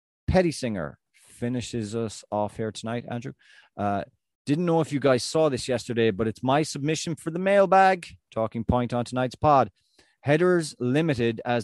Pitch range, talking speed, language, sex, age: 100-130 Hz, 165 wpm, English, male, 30-49